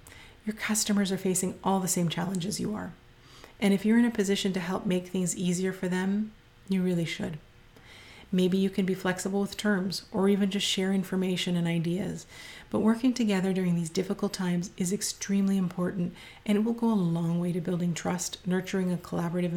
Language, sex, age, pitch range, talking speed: English, female, 30-49, 175-195 Hz, 195 wpm